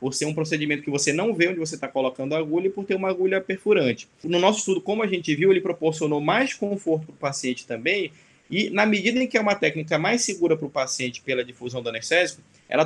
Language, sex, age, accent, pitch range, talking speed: Portuguese, male, 20-39, Brazilian, 145-185 Hz, 245 wpm